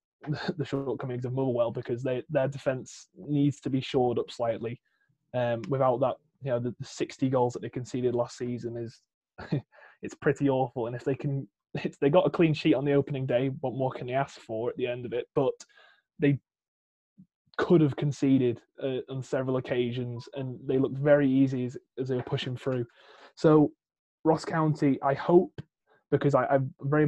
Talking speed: 190 wpm